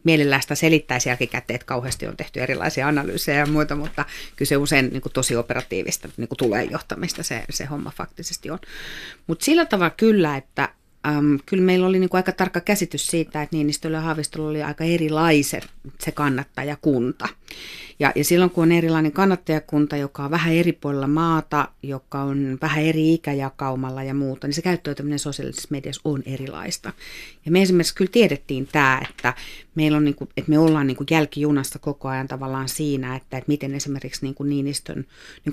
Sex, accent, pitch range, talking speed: female, native, 135-155 Hz, 175 wpm